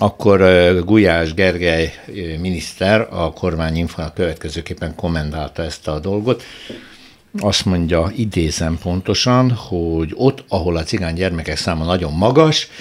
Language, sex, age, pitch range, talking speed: Hungarian, male, 60-79, 80-110 Hz, 110 wpm